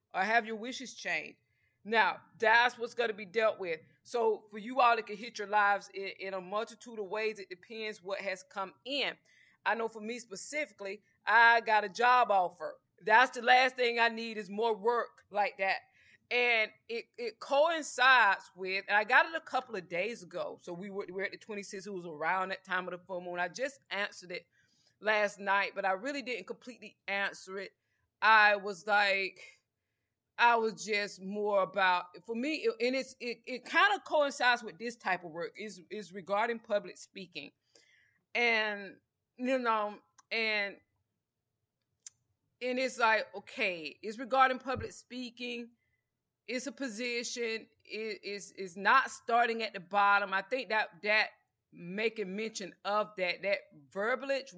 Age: 20-39